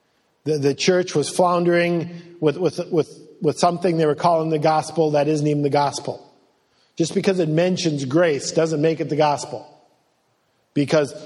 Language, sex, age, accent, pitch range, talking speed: English, male, 50-69, American, 150-180 Hz, 160 wpm